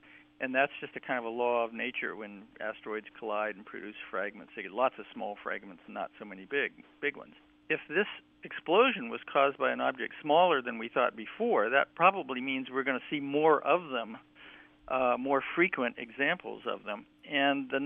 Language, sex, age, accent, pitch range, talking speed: English, male, 50-69, American, 105-140 Hz, 200 wpm